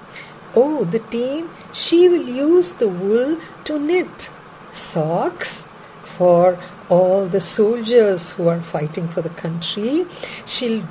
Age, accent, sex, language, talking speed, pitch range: 50-69, Indian, female, English, 120 wpm, 175-280 Hz